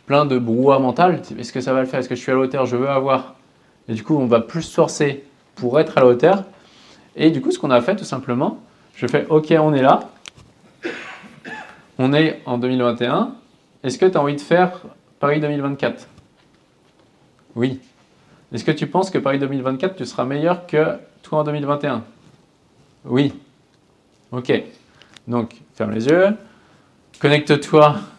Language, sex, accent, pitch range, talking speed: French, male, French, 120-150 Hz, 175 wpm